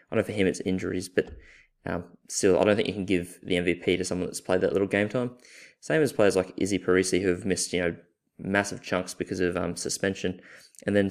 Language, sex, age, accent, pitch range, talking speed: English, male, 20-39, Australian, 90-105 Hz, 240 wpm